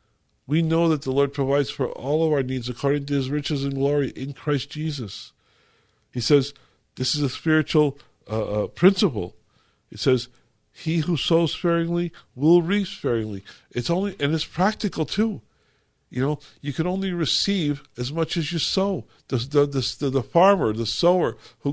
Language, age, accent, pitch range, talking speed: English, 50-69, American, 125-170 Hz, 175 wpm